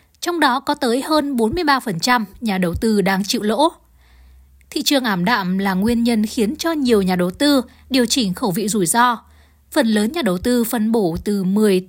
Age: 20-39